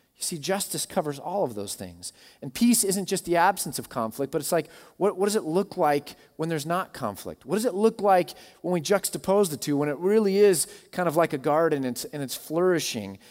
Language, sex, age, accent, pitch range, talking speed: English, male, 30-49, American, 125-170 Hz, 235 wpm